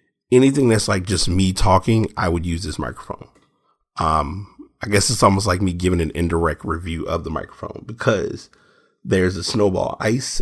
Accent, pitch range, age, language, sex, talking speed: American, 85-105 Hz, 30-49, English, male, 175 wpm